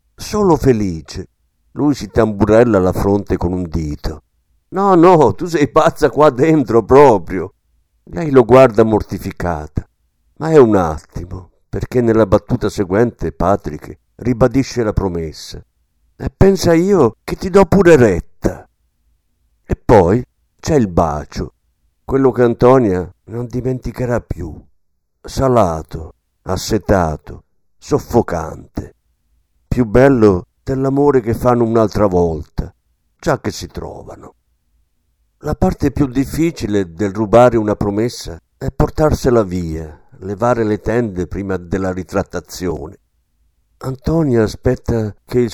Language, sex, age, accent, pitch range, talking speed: Italian, male, 50-69, native, 85-130 Hz, 115 wpm